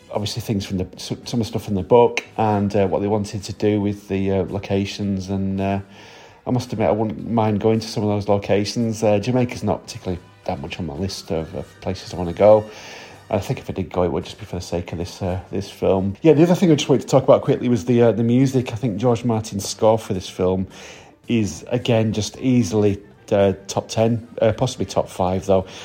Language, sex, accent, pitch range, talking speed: English, male, British, 95-115 Hz, 245 wpm